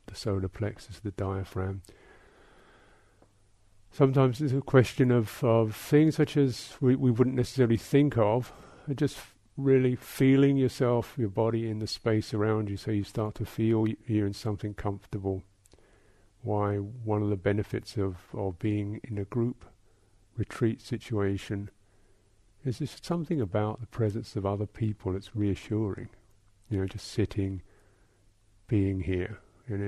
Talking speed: 145 wpm